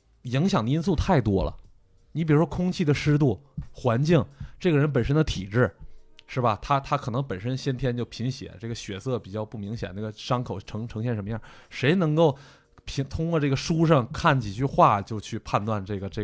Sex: male